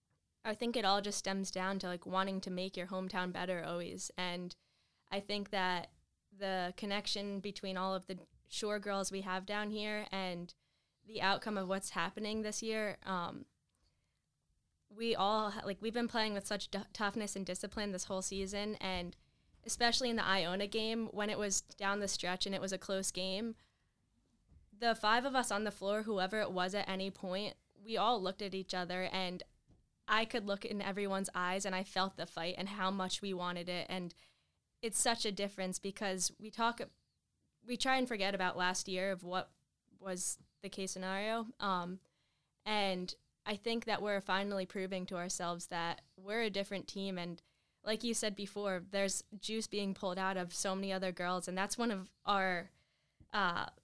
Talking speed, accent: 185 wpm, American